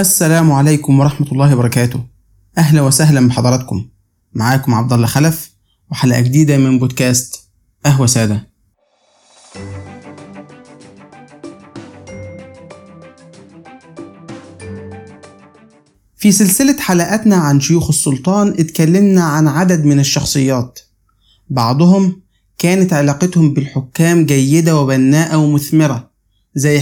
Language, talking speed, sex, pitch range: Arabic, 85 wpm, male, 125-165 Hz